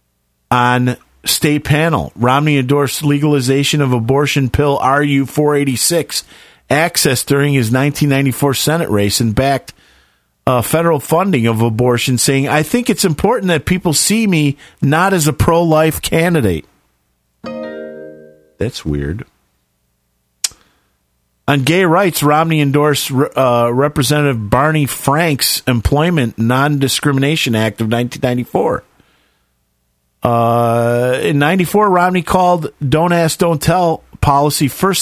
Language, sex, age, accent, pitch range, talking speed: English, male, 40-59, American, 120-155 Hz, 110 wpm